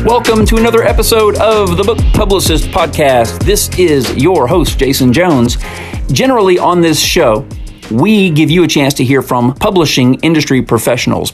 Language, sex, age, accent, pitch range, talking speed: English, male, 40-59, American, 135-175 Hz, 160 wpm